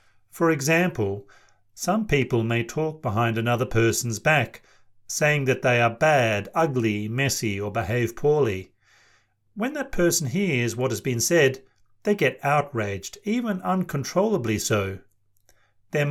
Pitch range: 110-150 Hz